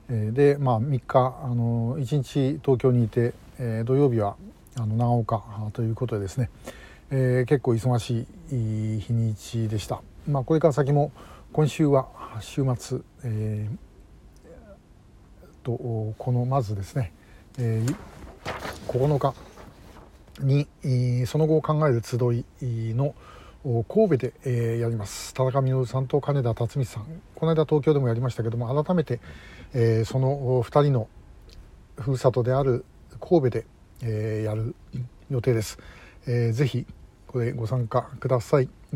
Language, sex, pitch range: Japanese, male, 115-140 Hz